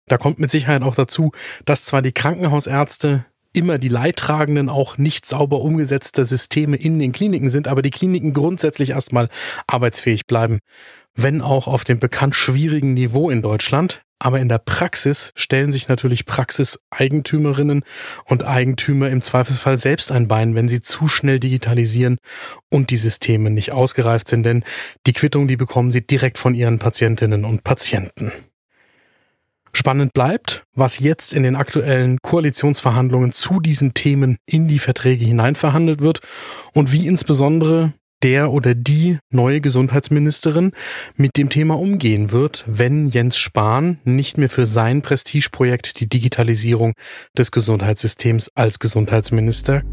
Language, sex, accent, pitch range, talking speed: German, male, German, 120-145 Hz, 145 wpm